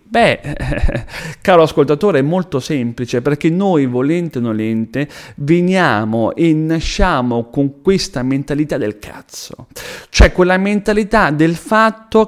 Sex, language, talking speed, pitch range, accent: male, Italian, 115 wpm, 140-235 Hz, native